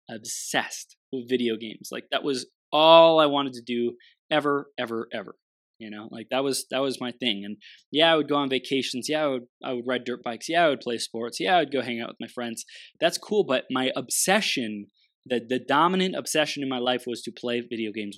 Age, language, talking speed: 20-39, English, 230 wpm